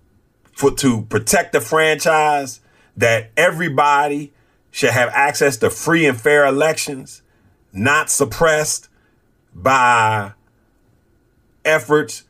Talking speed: 90 wpm